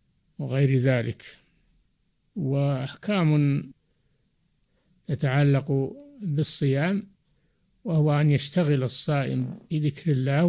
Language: Arabic